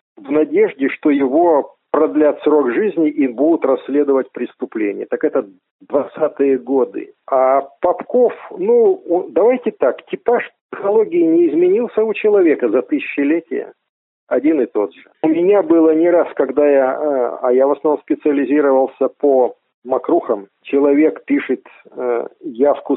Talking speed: 130 wpm